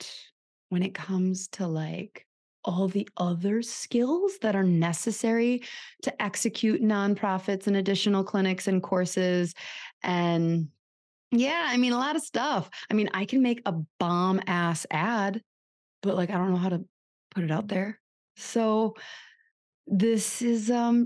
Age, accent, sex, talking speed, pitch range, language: 20-39, American, female, 150 wpm, 175-225 Hz, English